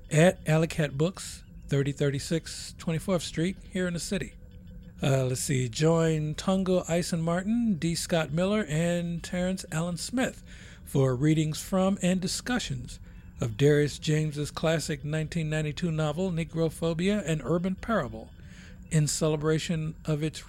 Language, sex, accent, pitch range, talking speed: English, male, American, 140-180 Hz, 125 wpm